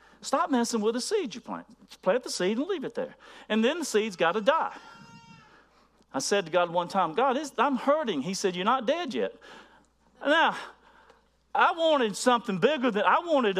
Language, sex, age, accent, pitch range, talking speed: English, male, 50-69, American, 165-255 Hz, 195 wpm